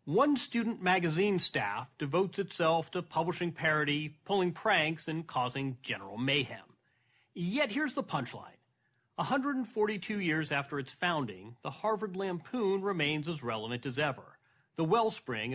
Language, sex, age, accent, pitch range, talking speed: English, male, 40-59, American, 140-185 Hz, 130 wpm